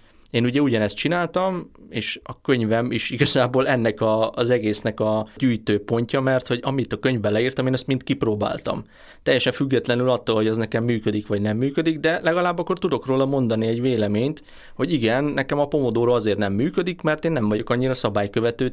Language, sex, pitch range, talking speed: Hungarian, male, 105-140 Hz, 185 wpm